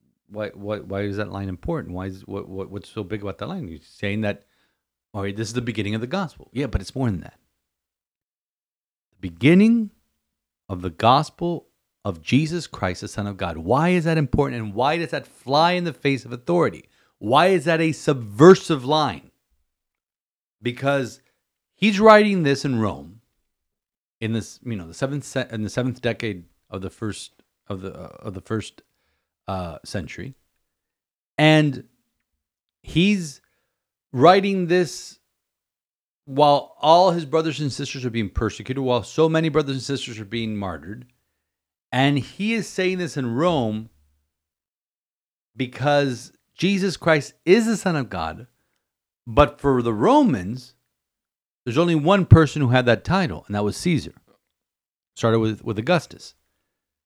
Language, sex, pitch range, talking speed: English, male, 95-155 Hz, 160 wpm